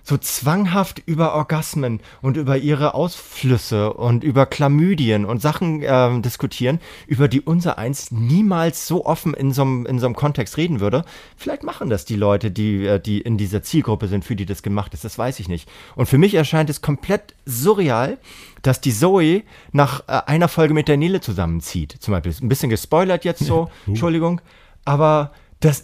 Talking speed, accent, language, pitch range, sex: 180 wpm, German, German, 120-160 Hz, male